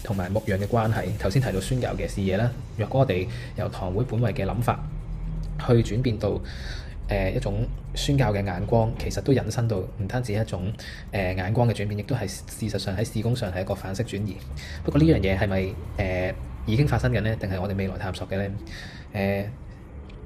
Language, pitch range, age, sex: Chinese, 95-120 Hz, 20-39, male